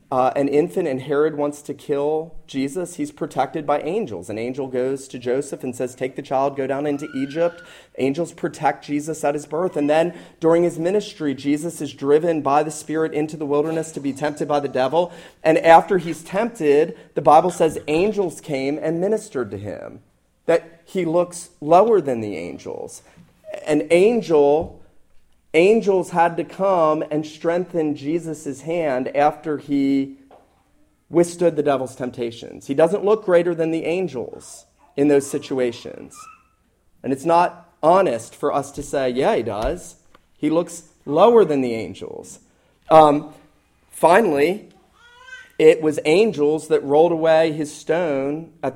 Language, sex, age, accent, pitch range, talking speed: English, male, 30-49, American, 145-170 Hz, 155 wpm